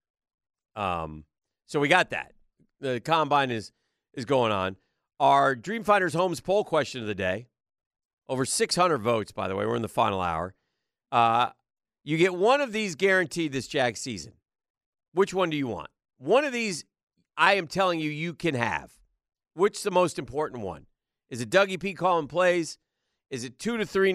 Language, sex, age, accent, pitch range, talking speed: English, male, 40-59, American, 115-170 Hz, 180 wpm